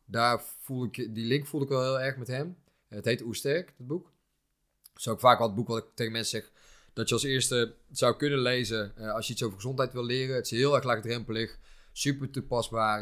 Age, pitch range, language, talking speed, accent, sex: 20-39, 110-135 Hz, Dutch, 240 wpm, Dutch, male